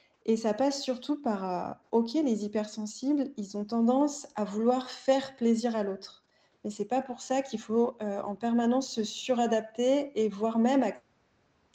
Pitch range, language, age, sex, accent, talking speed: 205-245 Hz, French, 20-39, female, French, 185 wpm